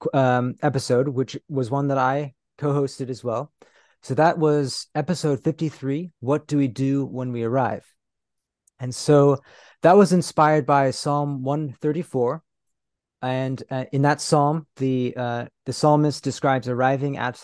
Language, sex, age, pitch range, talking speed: English, male, 30-49, 130-150 Hz, 150 wpm